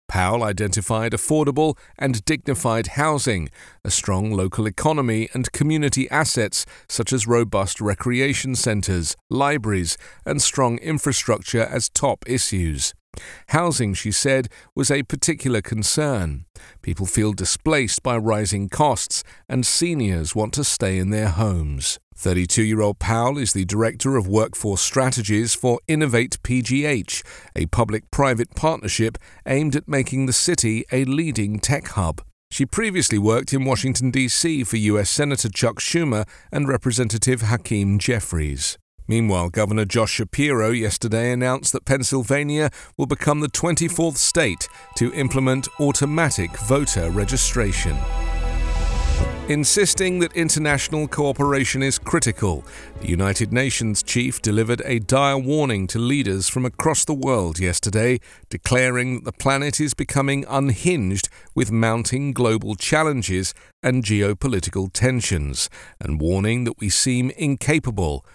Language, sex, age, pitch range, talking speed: English, male, 40-59, 100-135 Hz, 130 wpm